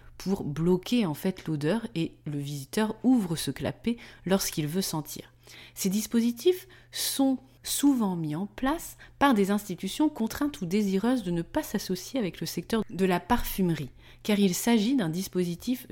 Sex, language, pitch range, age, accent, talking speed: female, French, 155-240 Hz, 30-49, French, 160 wpm